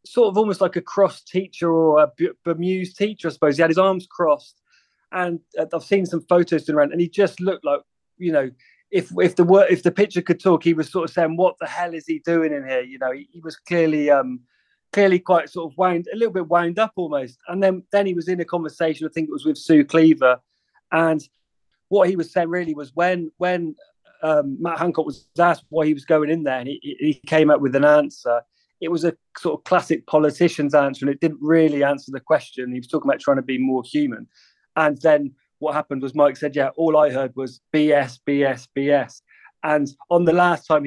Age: 30-49